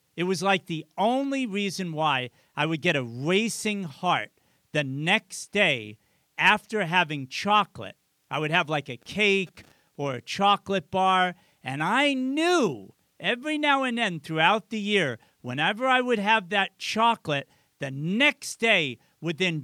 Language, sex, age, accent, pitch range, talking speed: English, male, 50-69, American, 160-210 Hz, 150 wpm